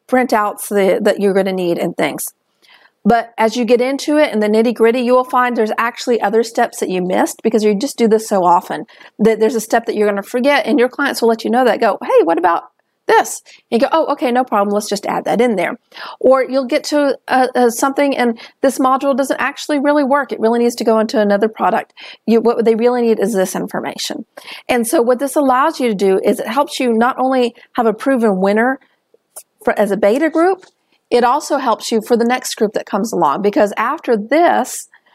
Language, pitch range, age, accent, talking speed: English, 215-265 Hz, 40-59, American, 225 wpm